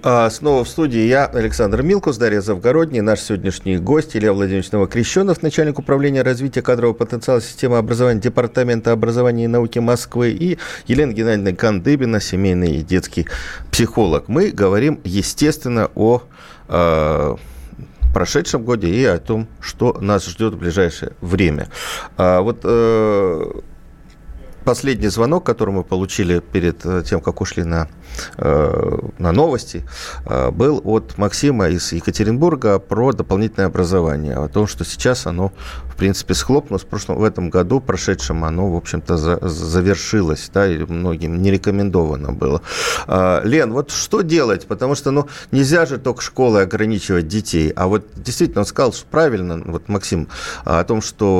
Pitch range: 90-120 Hz